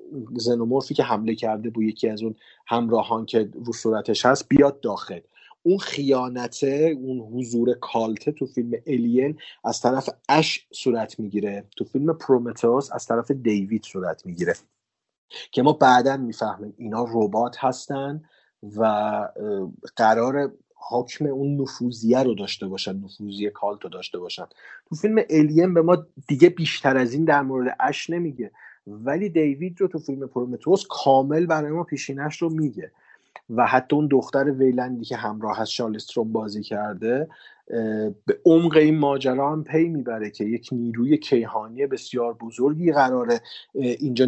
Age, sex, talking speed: 30-49, male, 145 wpm